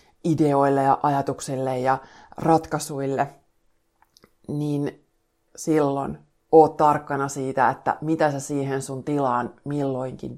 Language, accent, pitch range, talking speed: Finnish, native, 135-160 Hz, 100 wpm